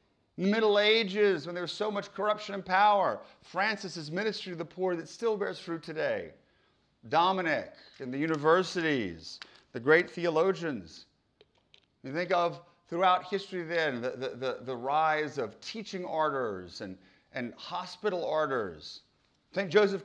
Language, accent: English, American